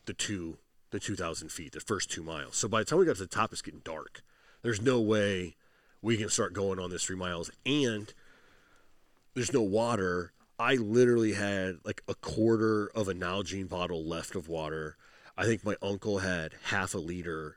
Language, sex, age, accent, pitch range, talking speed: English, male, 30-49, American, 90-120 Hz, 195 wpm